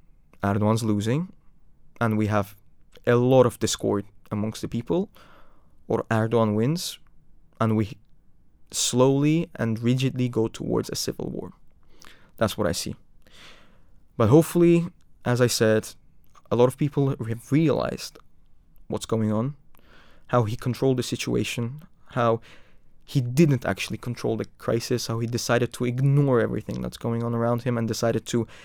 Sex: male